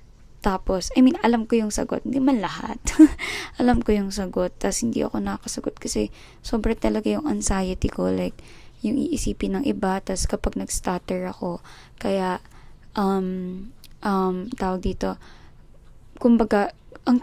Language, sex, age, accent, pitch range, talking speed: Filipino, female, 20-39, native, 180-220 Hz, 140 wpm